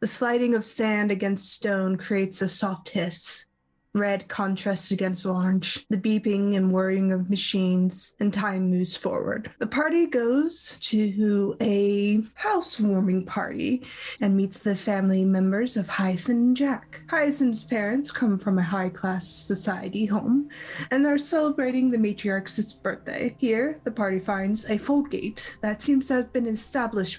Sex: female